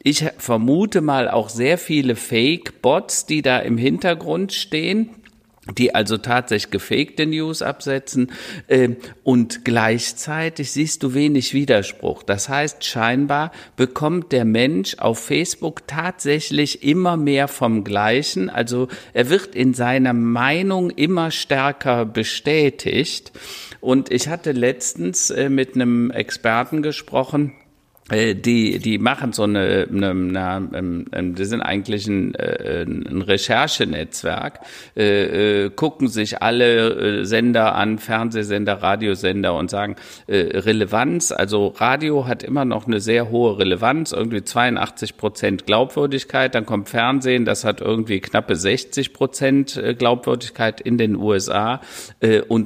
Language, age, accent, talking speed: German, 50-69, German, 120 wpm